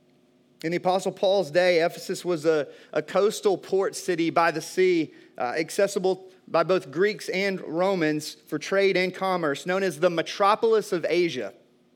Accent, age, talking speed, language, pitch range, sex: American, 30-49, 160 wpm, English, 165-200 Hz, male